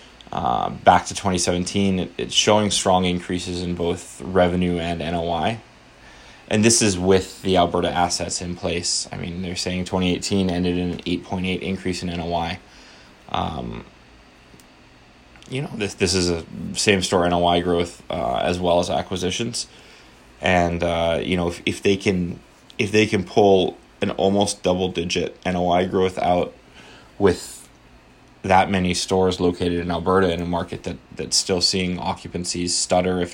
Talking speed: 155 wpm